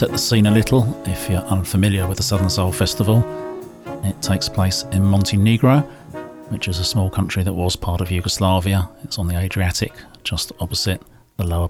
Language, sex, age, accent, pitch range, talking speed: English, male, 40-59, British, 90-105 Hz, 185 wpm